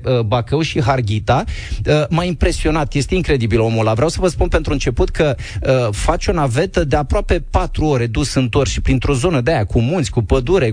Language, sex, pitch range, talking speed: Romanian, male, 120-155 Hz, 195 wpm